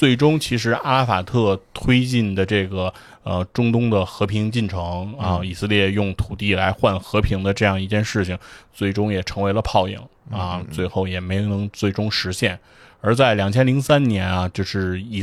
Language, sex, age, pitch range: Chinese, male, 20-39, 95-110 Hz